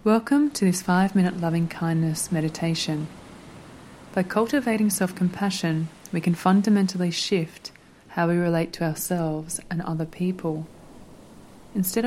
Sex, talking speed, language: female, 110 wpm, English